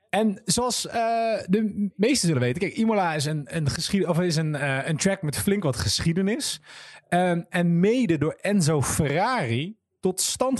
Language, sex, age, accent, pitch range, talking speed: Dutch, male, 30-49, Dutch, 140-195 Hz, 175 wpm